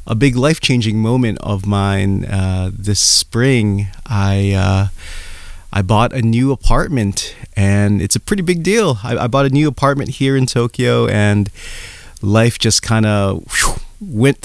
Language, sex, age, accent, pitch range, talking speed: English, male, 30-49, American, 95-115 Hz, 155 wpm